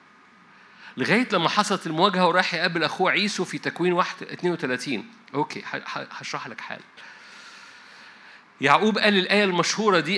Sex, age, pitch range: male, 50-69, 150-190 Hz